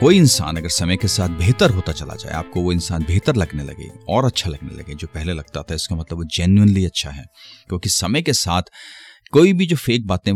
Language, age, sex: Hindi, 30-49, male